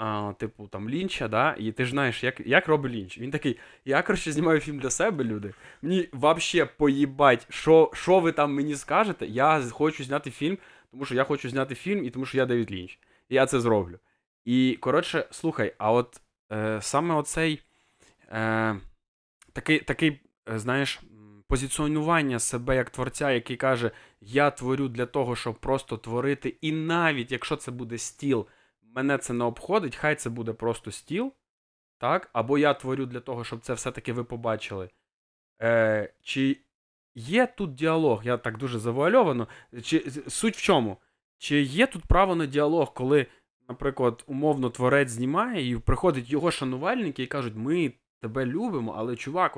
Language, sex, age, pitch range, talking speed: Ukrainian, male, 20-39, 115-150 Hz, 165 wpm